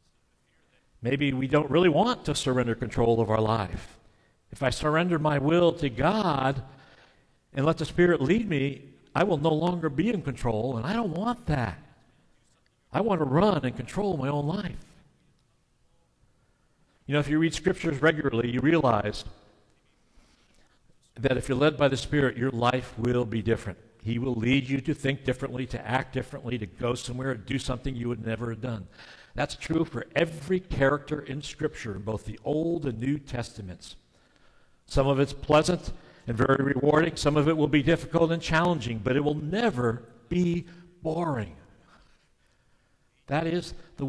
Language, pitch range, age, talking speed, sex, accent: English, 120-155 Hz, 60-79, 165 wpm, male, American